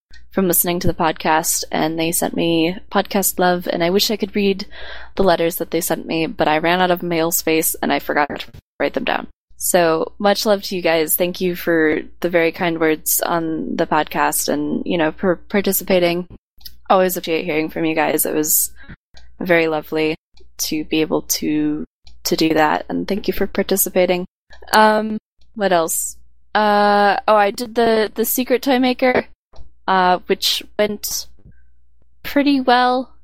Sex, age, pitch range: female, 20-39, 160-195 Hz